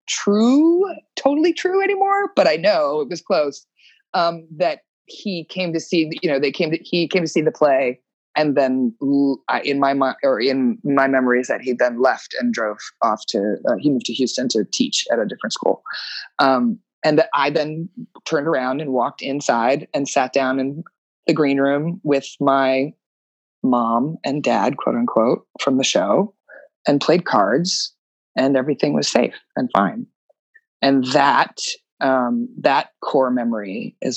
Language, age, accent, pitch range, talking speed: English, 20-39, American, 135-205 Hz, 170 wpm